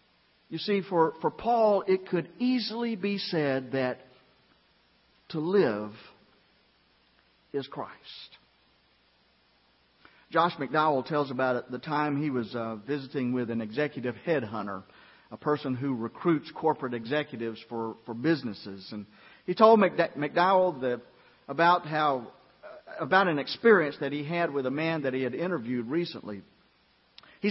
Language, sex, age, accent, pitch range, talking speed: English, male, 50-69, American, 135-190 Hz, 125 wpm